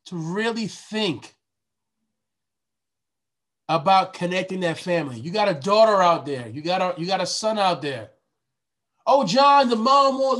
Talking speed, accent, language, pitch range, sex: 155 wpm, American, English, 170-235 Hz, male